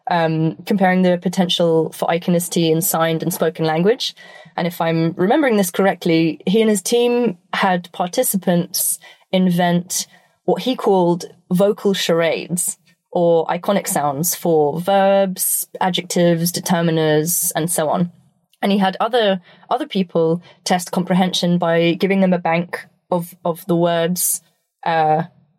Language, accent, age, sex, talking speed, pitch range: English, British, 20-39, female, 135 wpm, 165-190 Hz